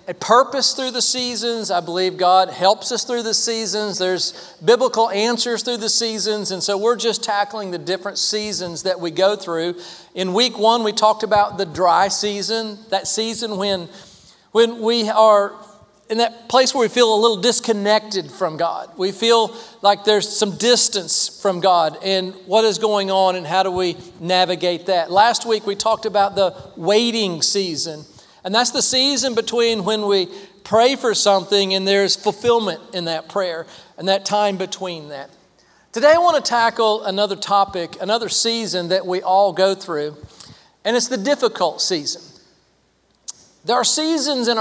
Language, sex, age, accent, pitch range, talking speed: English, male, 40-59, American, 185-230 Hz, 170 wpm